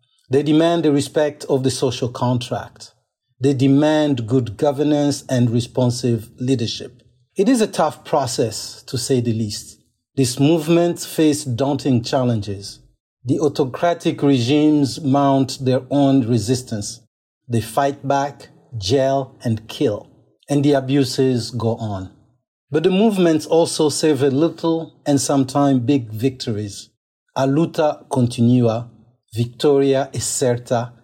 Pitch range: 120-150 Hz